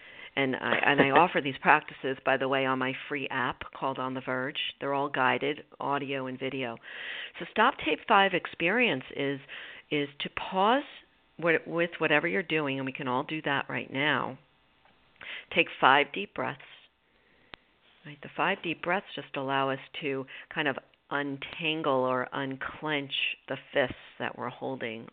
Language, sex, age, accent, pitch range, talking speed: English, female, 50-69, American, 130-165 Hz, 165 wpm